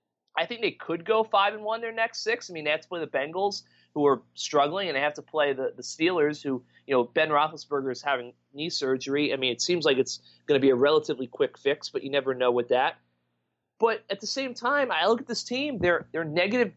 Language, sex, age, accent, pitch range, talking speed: English, male, 30-49, American, 130-190 Hz, 250 wpm